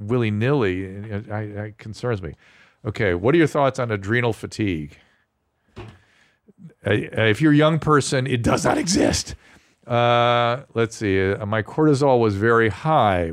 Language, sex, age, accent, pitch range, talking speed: English, male, 50-69, American, 95-120 Hz, 135 wpm